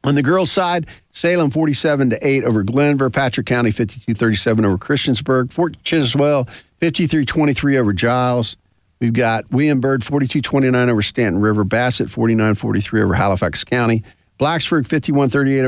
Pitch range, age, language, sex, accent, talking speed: 110-140 Hz, 50-69, English, male, American, 125 wpm